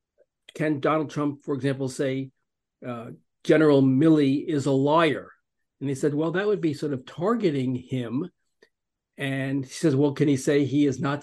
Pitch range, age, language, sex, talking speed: 130-155 Hz, 50-69, English, male, 175 wpm